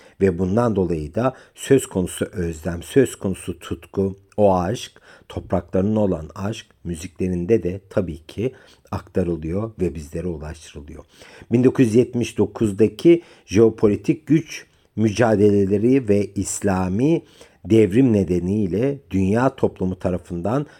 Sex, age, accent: male, 50-69, native